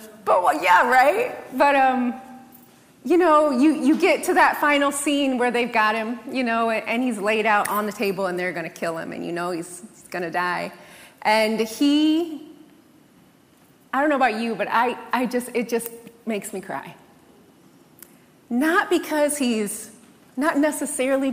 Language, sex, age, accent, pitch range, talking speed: English, female, 30-49, American, 225-285 Hz, 175 wpm